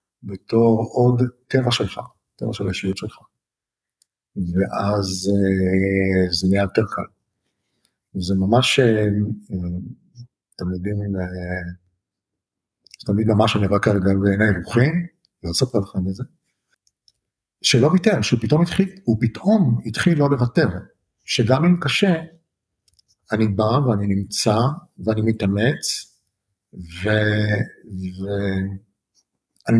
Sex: male